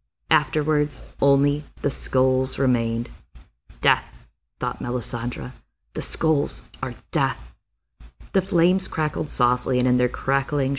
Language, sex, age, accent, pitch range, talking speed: English, female, 20-39, American, 125-165 Hz, 110 wpm